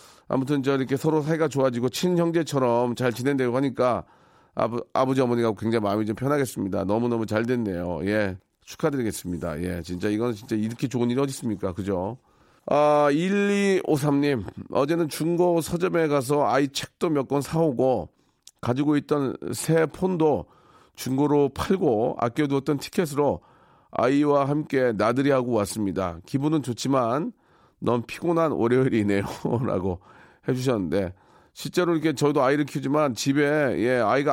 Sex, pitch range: male, 115-155 Hz